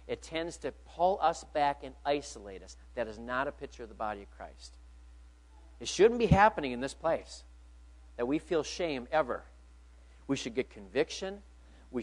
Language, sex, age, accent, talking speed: English, male, 50-69, American, 180 wpm